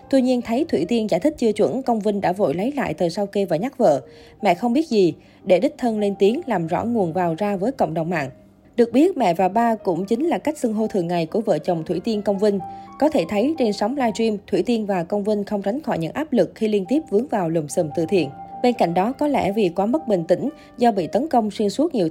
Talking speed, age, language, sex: 280 wpm, 20-39, Vietnamese, female